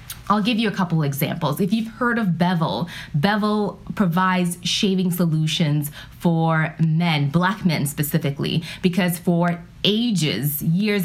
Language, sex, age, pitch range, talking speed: English, female, 20-39, 165-195 Hz, 130 wpm